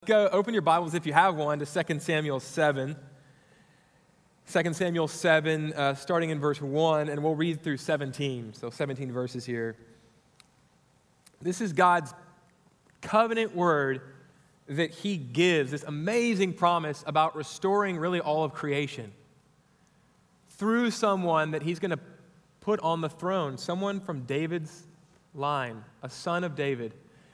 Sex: male